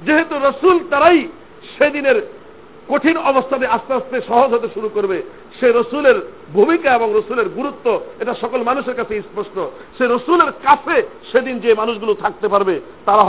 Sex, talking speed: male, 145 wpm